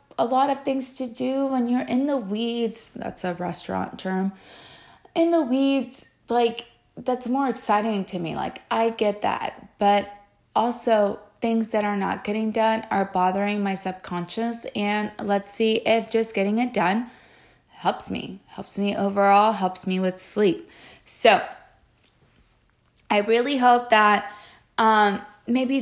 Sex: female